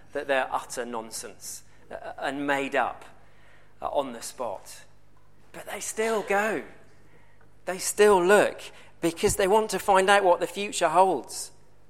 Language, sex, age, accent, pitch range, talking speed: English, male, 40-59, British, 120-185 Hz, 135 wpm